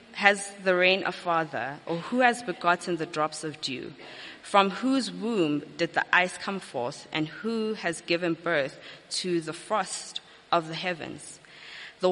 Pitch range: 165-215 Hz